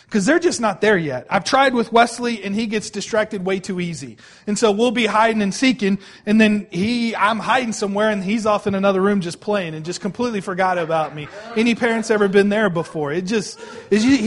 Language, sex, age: English, male, 30-49